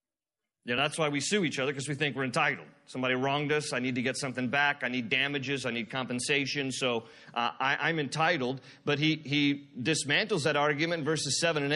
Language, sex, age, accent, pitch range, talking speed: English, male, 40-59, American, 145-195 Hz, 205 wpm